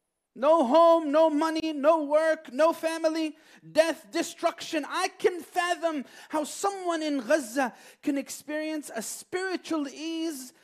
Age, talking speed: 30-49, 125 wpm